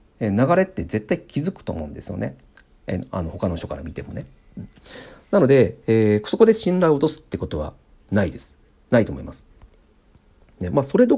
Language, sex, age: Japanese, male, 40-59